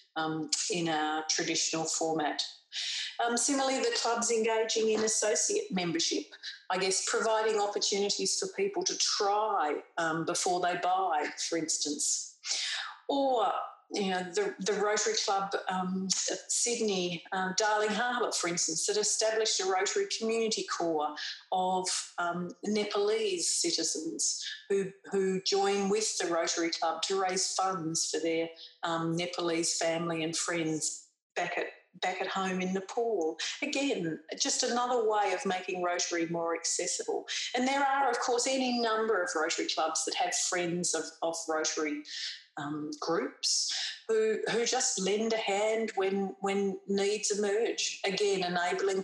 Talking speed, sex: 140 wpm, female